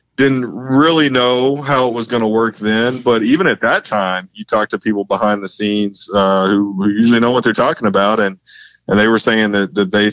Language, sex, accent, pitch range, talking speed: English, male, American, 95-115 Hz, 225 wpm